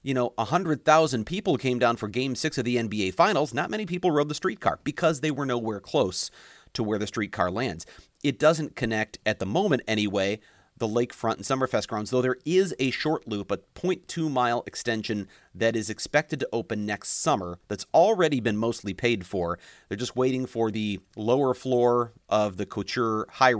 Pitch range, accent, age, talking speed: 105-130 Hz, American, 40-59, 190 wpm